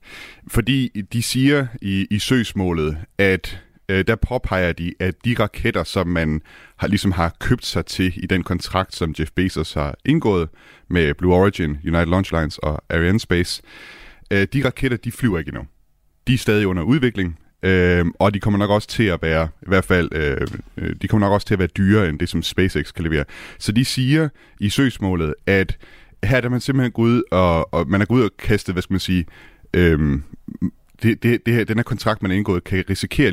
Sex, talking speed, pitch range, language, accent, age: male, 205 wpm, 85-105 Hz, Danish, native, 30-49